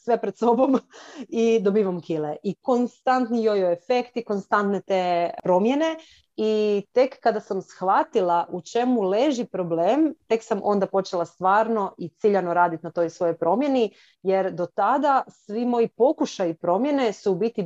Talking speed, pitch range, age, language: 150 wpm, 185-235 Hz, 30-49, Croatian